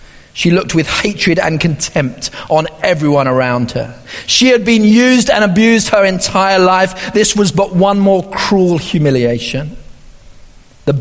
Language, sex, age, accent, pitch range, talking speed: English, male, 40-59, British, 145-230 Hz, 145 wpm